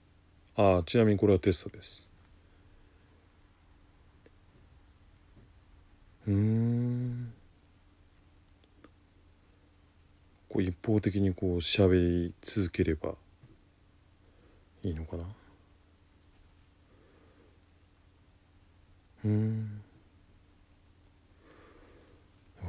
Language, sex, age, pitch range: Japanese, male, 40-59, 85-100 Hz